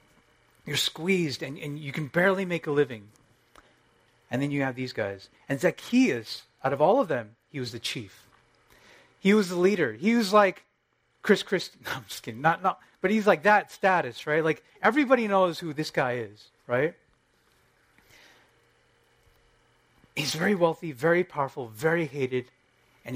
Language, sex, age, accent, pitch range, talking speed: English, male, 30-49, American, 120-180 Hz, 165 wpm